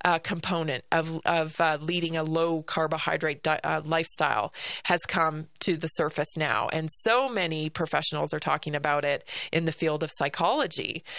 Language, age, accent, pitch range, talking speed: English, 30-49, American, 160-245 Hz, 165 wpm